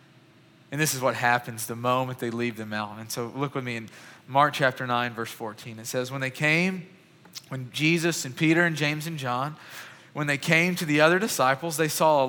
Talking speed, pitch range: 220 wpm, 120-150 Hz